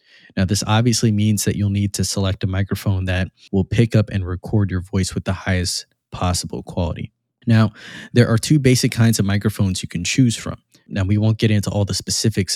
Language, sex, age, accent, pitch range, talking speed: English, male, 20-39, American, 95-110 Hz, 210 wpm